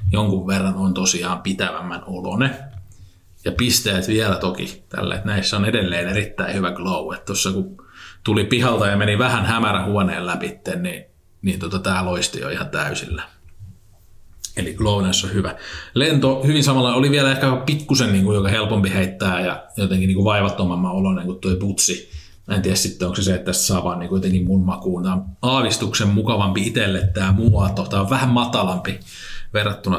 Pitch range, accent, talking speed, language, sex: 95-110 Hz, native, 170 wpm, Finnish, male